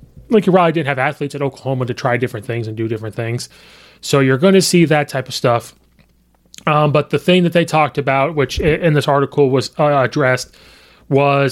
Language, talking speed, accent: English, 210 wpm, American